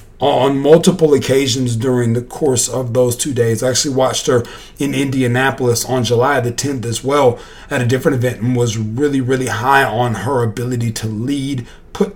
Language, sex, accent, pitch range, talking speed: English, male, American, 120-140 Hz, 185 wpm